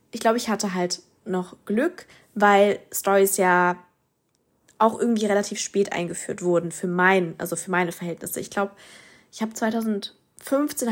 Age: 20-39